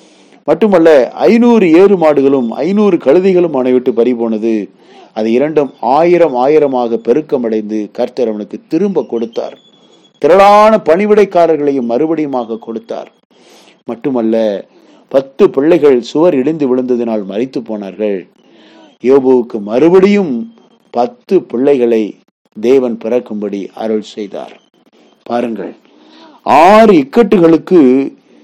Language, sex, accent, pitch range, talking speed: Tamil, male, native, 115-180 Hz, 85 wpm